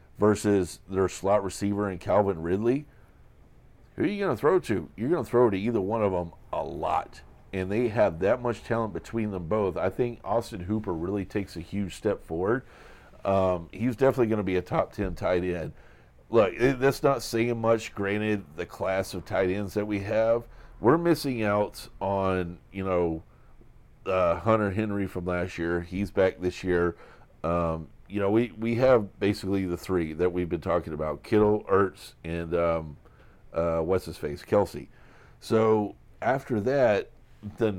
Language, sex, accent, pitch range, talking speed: English, male, American, 90-110 Hz, 180 wpm